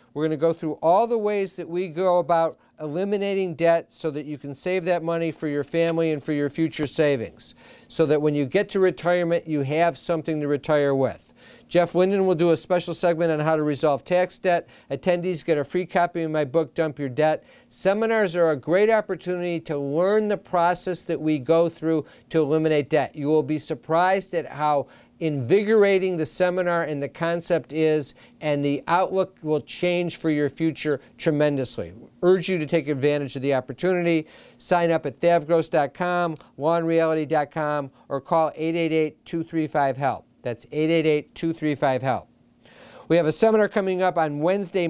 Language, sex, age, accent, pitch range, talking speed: English, male, 50-69, American, 150-180 Hz, 175 wpm